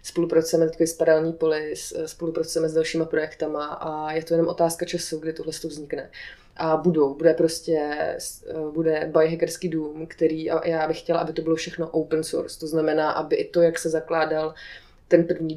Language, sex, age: Czech, female, 20-39